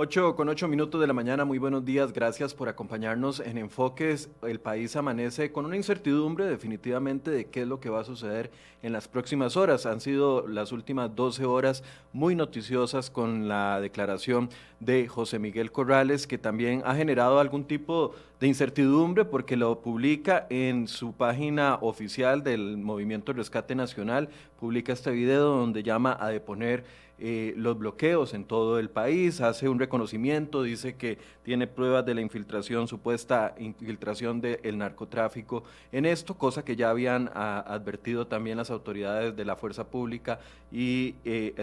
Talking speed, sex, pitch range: 165 wpm, male, 115-135 Hz